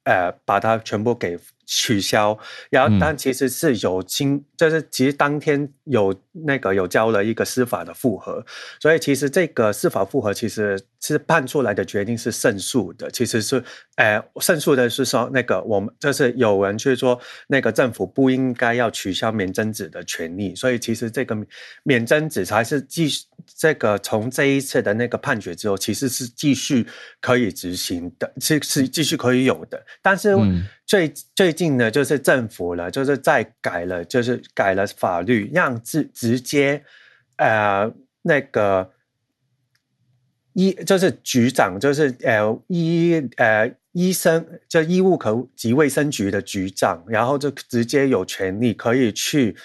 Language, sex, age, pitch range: Chinese, male, 30-49, 110-150 Hz